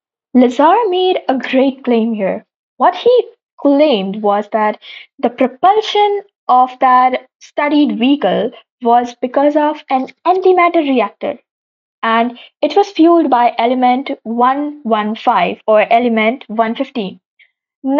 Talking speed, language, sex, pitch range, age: 110 wpm, English, female, 225-295 Hz, 20-39